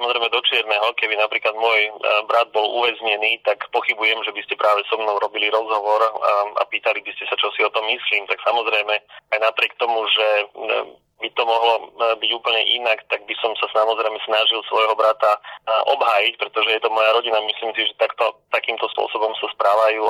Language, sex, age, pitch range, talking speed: Slovak, male, 30-49, 105-115 Hz, 190 wpm